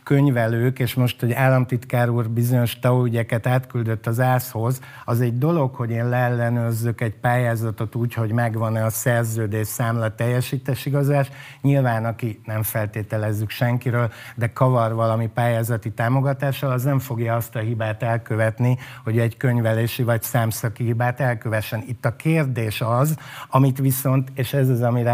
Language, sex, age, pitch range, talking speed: Hungarian, male, 60-79, 115-135 Hz, 145 wpm